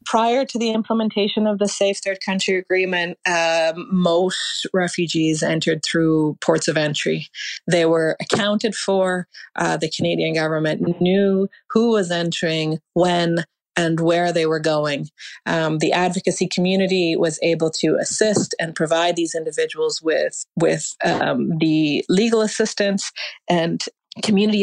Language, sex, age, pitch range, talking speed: English, female, 30-49, 165-195 Hz, 135 wpm